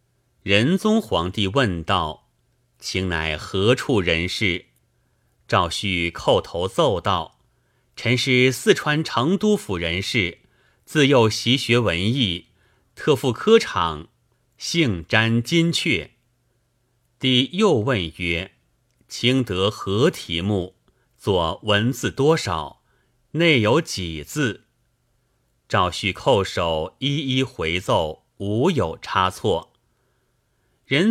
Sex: male